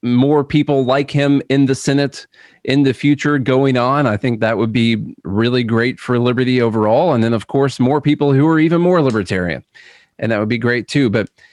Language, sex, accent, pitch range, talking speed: English, male, American, 110-140 Hz, 210 wpm